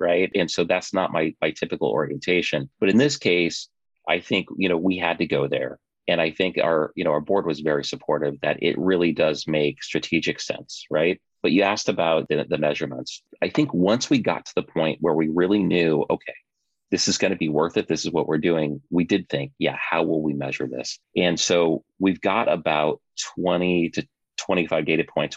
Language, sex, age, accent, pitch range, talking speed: English, male, 30-49, American, 80-90 Hz, 220 wpm